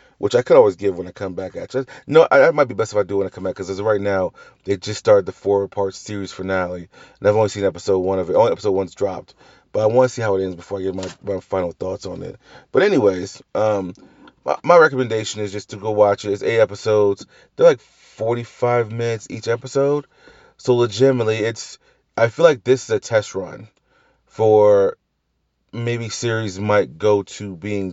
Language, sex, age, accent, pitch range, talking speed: English, male, 30-49, American, 100-130 Hz, 220 wpm